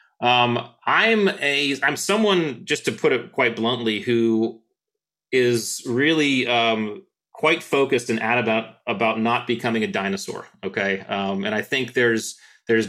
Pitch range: 110-130 Hz